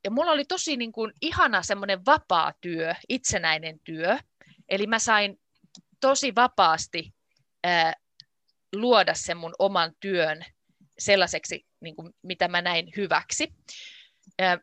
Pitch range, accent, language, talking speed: 175-245 Hz, native, Finnish, 125 wpm